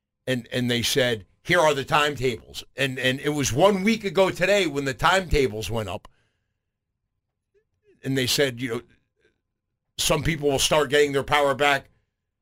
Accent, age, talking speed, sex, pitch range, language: American, 50-69, 165 wpm, male, 110-175 Hz, English